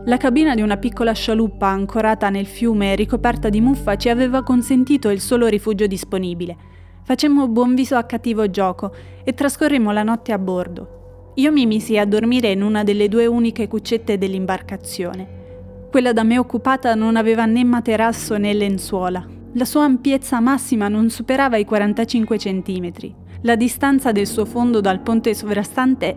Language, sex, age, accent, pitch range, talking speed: Italian, female, 30-49, native, 200-240 Hz, 165 wpm